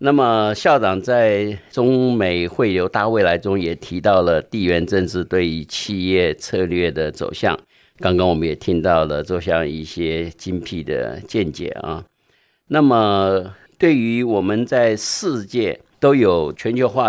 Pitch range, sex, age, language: 85-110 Hz, male, 50-69, Chinese